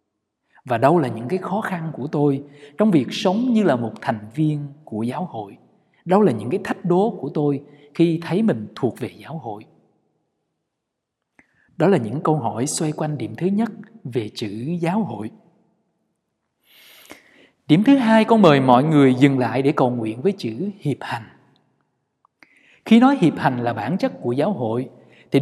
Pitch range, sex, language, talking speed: 130-200 Hz, male, Vietnamese, 180 wpm